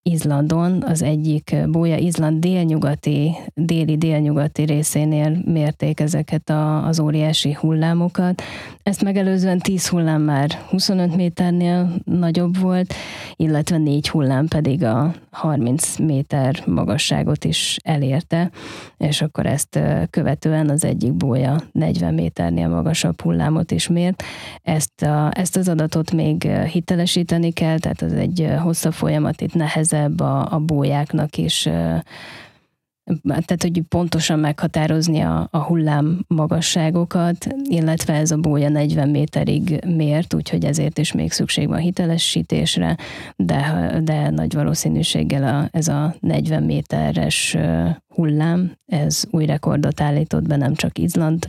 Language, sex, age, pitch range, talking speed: Hungarian, female, 20-39, 145-170 Hz, 120 wpm